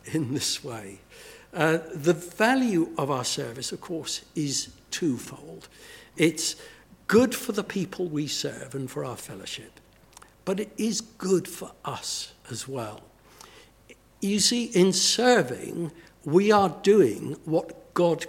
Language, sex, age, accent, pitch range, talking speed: English, male, 60-79, British, 135-180 Hz, 135 wpm